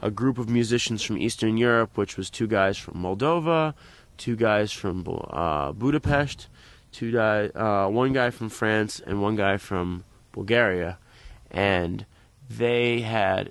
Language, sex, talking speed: English, male, 145 wpm